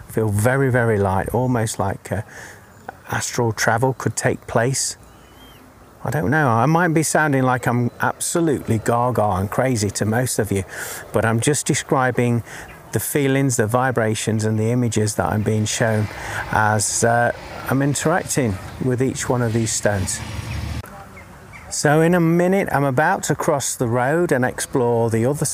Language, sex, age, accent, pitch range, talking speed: English, male, 40-59, British, 105-145 Hz, 160 wpm